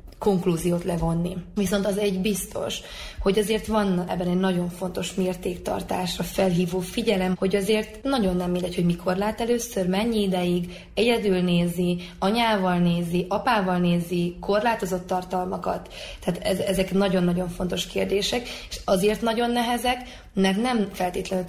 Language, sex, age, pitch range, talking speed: Hungarian, female, 20-39, 180-200 Hz, 130 wpm